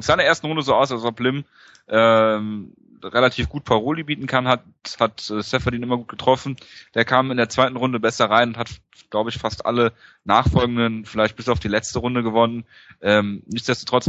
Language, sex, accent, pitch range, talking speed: German, male, German, 110-125 Hz, 200 wpm